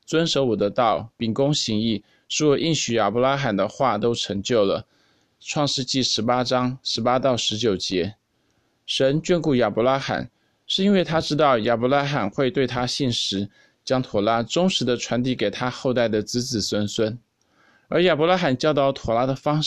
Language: Chinese